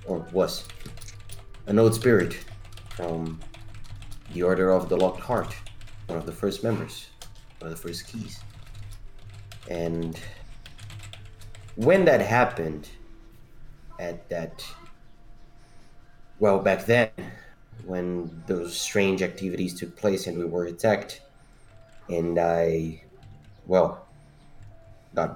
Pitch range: 85-110 Hz